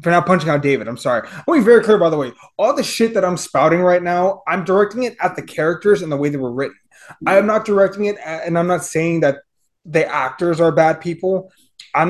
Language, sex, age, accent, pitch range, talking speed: English, male, 20-39, American, 150-200 Hz, 250 wpm